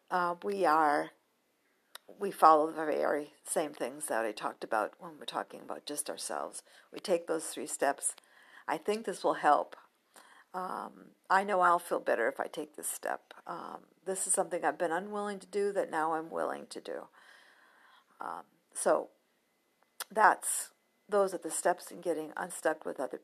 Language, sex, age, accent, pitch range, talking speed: English, female, 50-69, American, 165-200 Hz, 175 wpm